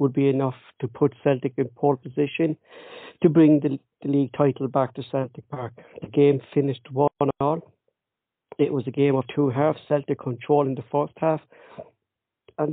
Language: English